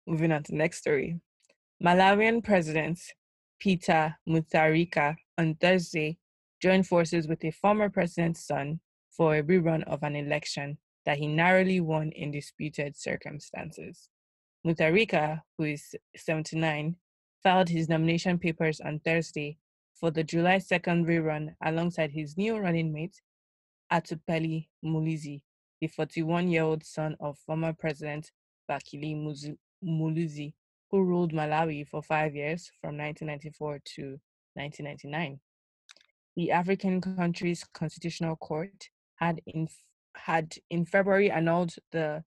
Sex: female